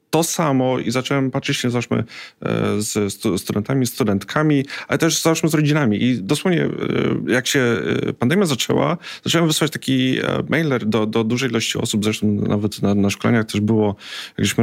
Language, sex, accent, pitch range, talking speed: Polish, male, native, 110-140 Hz, 155 wpm